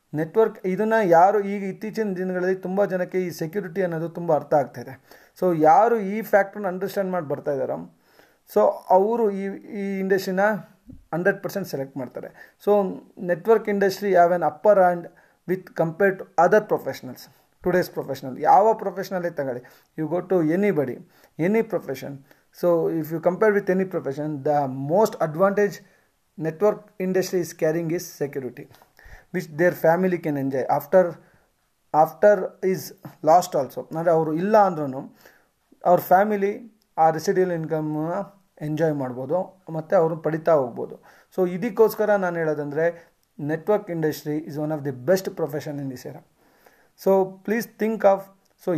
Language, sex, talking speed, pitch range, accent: Kannada, male, 140 wpm, 155-195 Hz, native